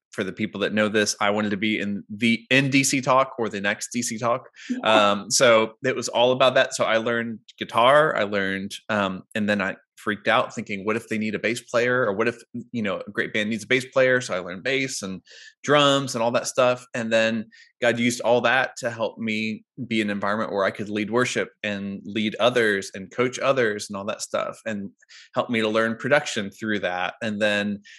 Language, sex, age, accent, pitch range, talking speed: English, male, 20-39, American, 105-120 Hz, 225 wpm